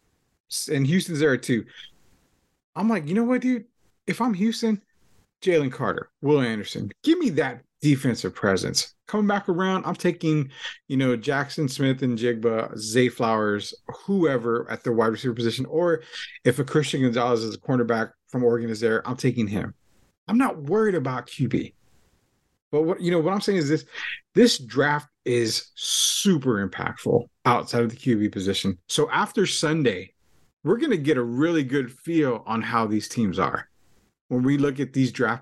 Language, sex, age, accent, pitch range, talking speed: English, male, 30-49, American, 115-150 Hz, 175 wpm